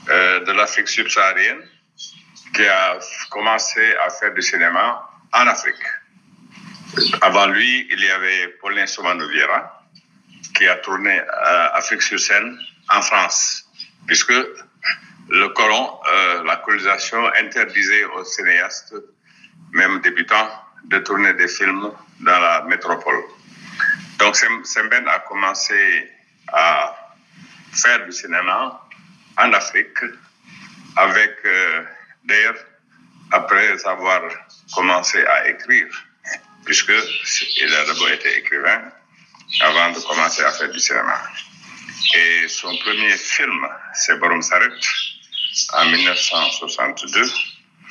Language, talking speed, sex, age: French, 110 wpm, male, 60-79